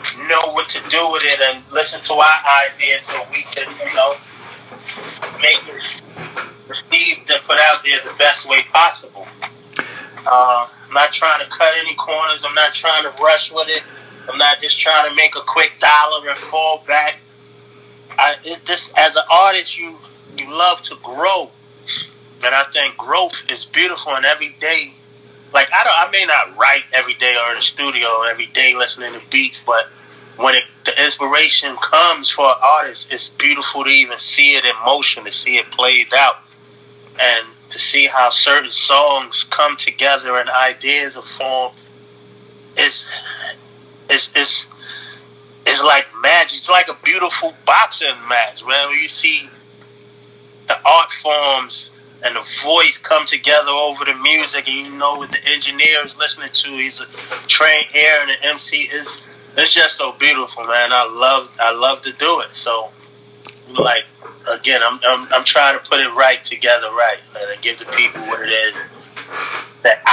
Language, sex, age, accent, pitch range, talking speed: English, male, 20-39, American, 135-155 Hz, 175 wpm